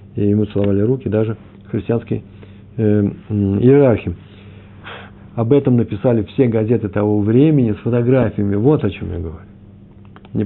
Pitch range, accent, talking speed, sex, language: 100-130 Hz, native, 130 wpm, male, Russian